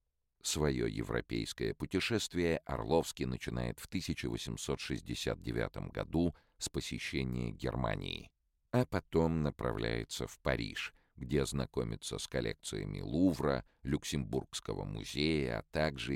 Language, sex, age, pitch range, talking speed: Russian, male, 50-69, 65-80 Hz, 95 wpm